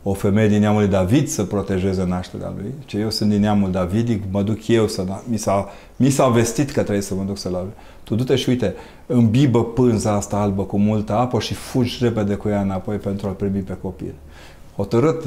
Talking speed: 210 wpm